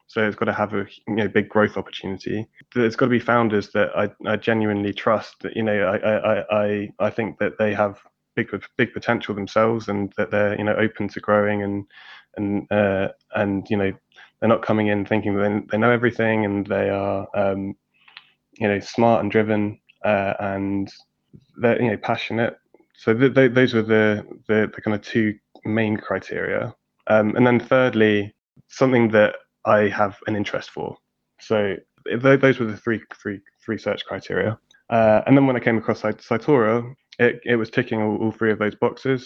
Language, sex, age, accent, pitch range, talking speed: English, male, 20-39, British, 105-115 Hz, 190 wpm